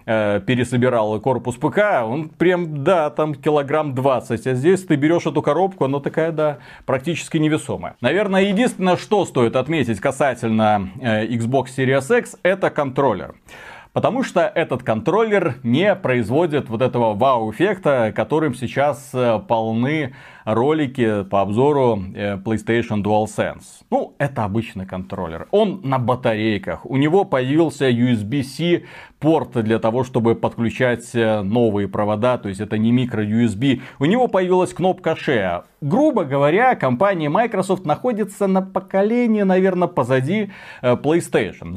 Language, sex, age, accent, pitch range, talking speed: Russian, male, 30-49, native, 115-165 Hz, 125 wpm